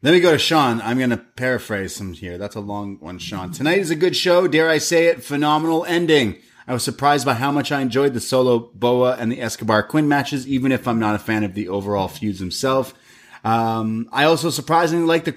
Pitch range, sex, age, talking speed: 115-140 Hz, male, 30-49, 235 wpm